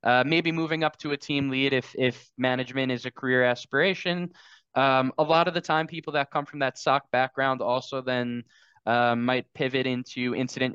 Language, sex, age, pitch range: English, male, 10-29, 125-140 Hz